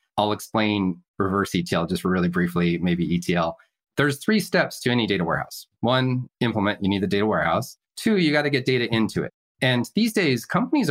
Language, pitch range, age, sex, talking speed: English, 95-130 Hz, 30-49, male, 195 wpm